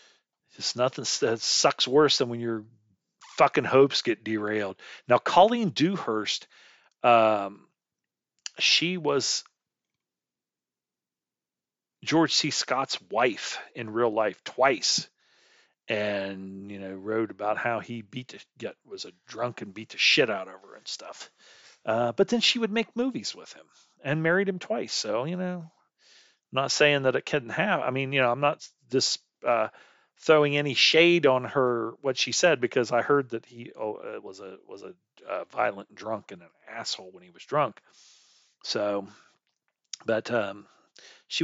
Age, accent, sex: 40-59, American, male